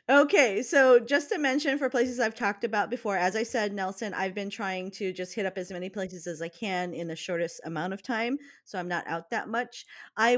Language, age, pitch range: English, 40-59, 170-230 Hz